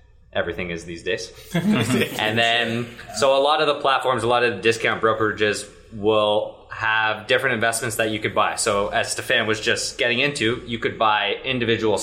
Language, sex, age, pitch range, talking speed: English, male, 20-39, 100-115 Hz, 185 wpm